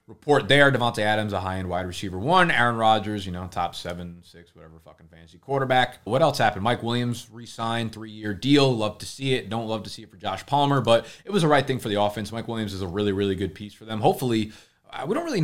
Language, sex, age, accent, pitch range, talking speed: English, male, 20-39, American, 95-120 Hz, 245 wpm